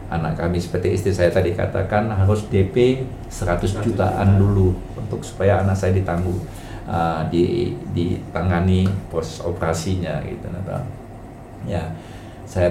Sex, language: male, Indonesian